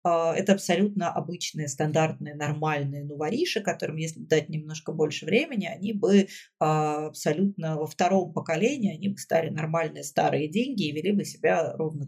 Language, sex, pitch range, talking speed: Russian, female, 155-190 Hz, 145 wpm